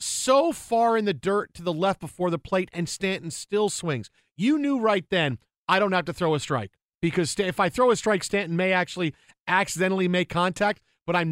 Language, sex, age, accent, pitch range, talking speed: English, male, 40-59, American, 150-195 Hz, 210 wpm